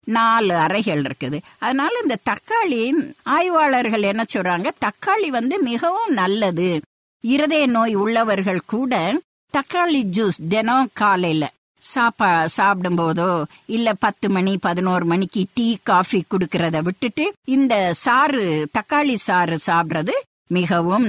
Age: 50-69